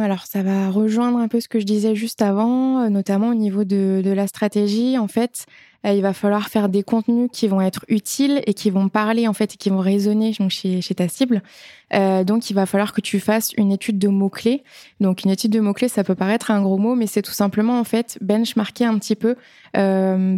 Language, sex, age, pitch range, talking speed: French, female, 20-39, 195-225 Hz, 235 wpm